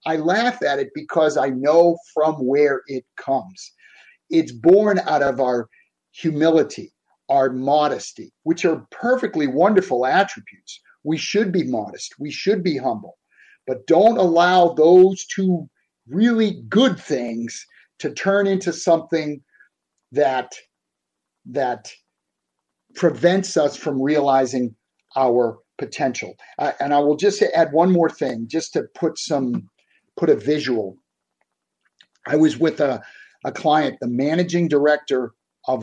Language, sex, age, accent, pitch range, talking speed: English, male, 50-69, American, 130-185 Hz, 130 wpm